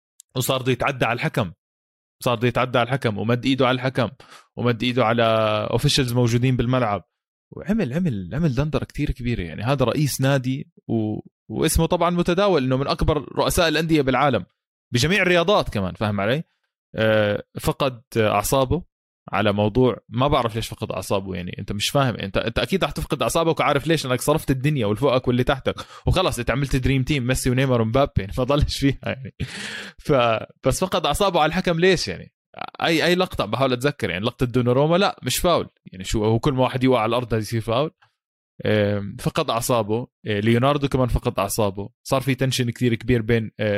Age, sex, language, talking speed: 20-39, male, Arabic, 175 wpm